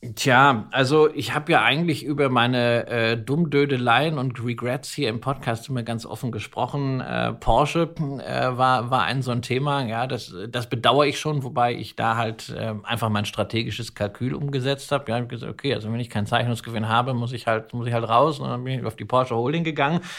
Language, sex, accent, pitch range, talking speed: German, male, German, 110-135 Hz, 215 wpm